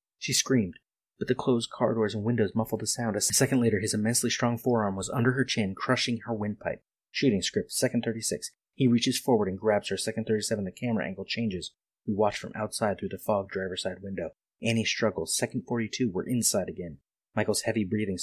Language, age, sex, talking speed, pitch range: English, 30-49, male, 200 wpm, 95-115 Hz